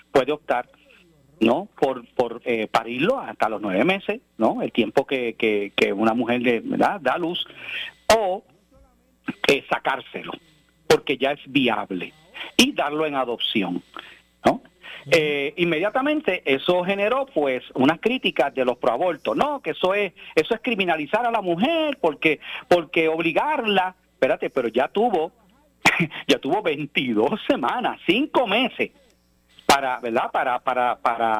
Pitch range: 135-230 Hz